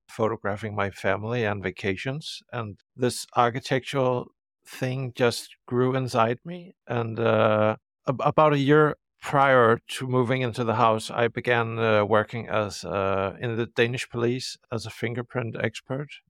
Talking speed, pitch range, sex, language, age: 145 wpm, 110-125 Hz, male, English, 50-69